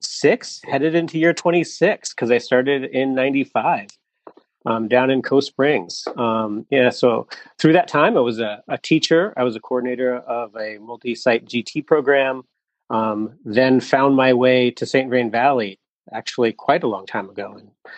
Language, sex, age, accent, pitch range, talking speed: English, male, 30-49, American, 120-155 Hz, 180 wpm